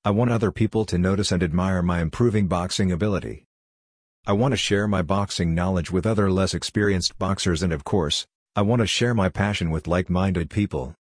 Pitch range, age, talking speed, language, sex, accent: 90-110 Hz, 50-69, 195 wpm, English, male, American